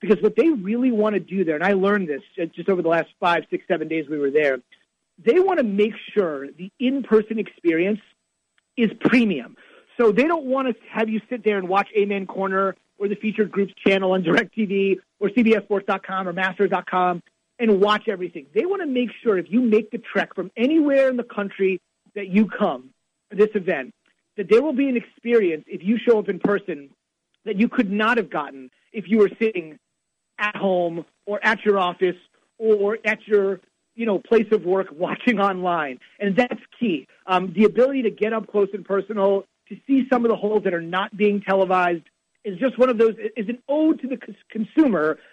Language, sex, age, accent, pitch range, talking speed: English, male, 30-49, American, 185-225 Hz, 205 wpm